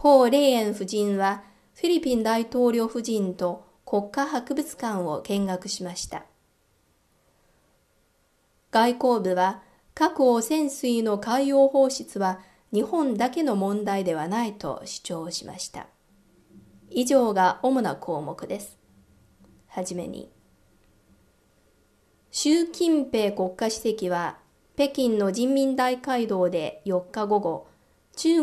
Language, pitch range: Japanese, 190-255 Hz